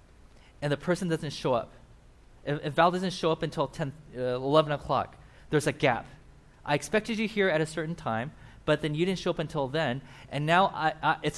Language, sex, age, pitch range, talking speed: English, male, 20-39, 120-155 Hz, 200 wpm